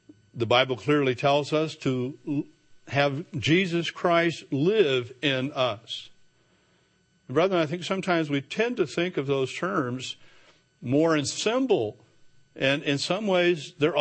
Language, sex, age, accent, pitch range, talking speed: English, male, 60-79, American, 135-175 Hz, 135 wpm